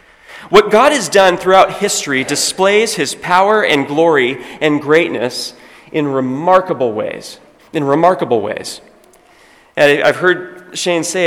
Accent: American